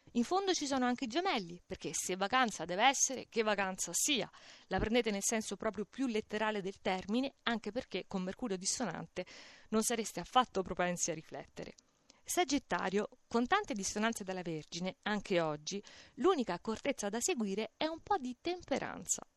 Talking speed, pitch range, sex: 160 wpm, 195-270 Hz, female